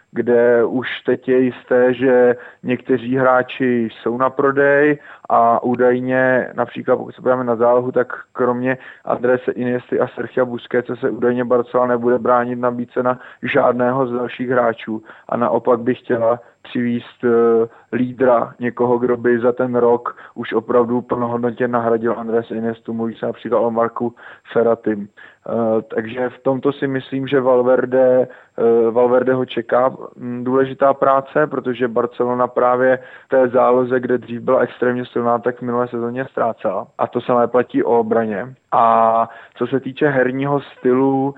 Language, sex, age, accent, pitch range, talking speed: Czech, male, 30-49, native, 120-130 Hz, 150 wpm